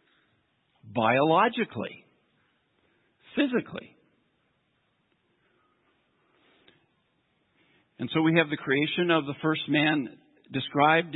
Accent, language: American, English